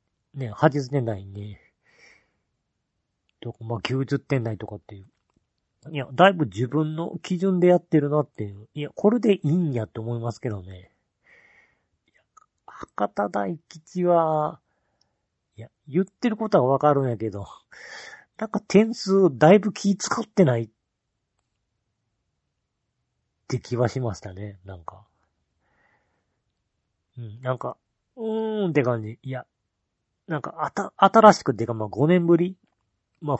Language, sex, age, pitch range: Japanese, male, 40-59, 110-170 Hz